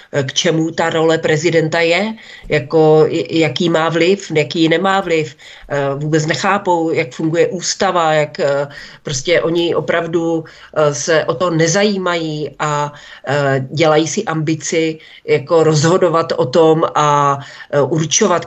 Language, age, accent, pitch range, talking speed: Czech, 40-59, native, 150-185 Hz, 110 wpm